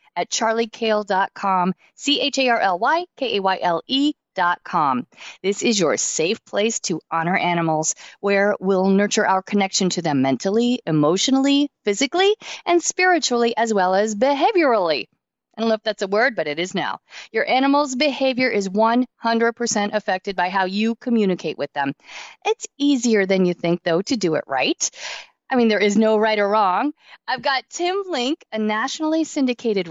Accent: American